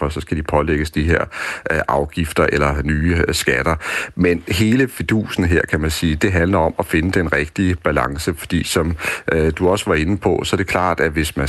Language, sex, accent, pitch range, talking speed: Danish, male, native, 75-95 Hz, 205 wpm